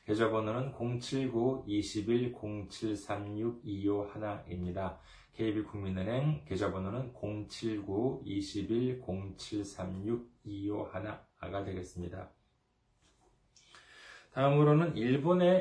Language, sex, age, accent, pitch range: Korean, male, 20-39, native, 95-115 Hz